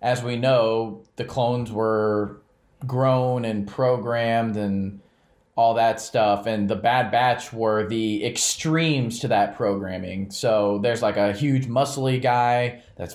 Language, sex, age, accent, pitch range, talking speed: English, male, 20-39, American, 105-125 Hz, 140 wpm